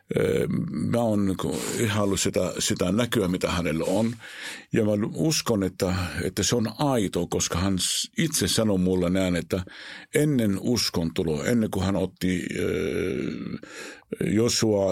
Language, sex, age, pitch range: Finnish, male, 60-79, 90-115 Hz